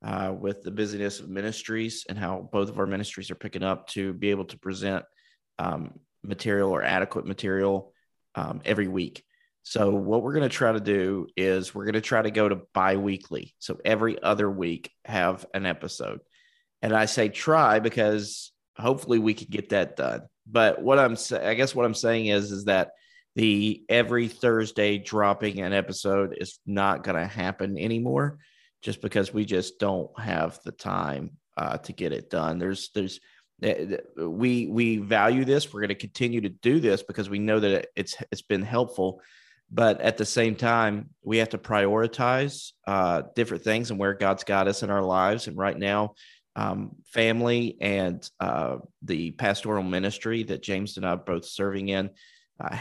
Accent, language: American, English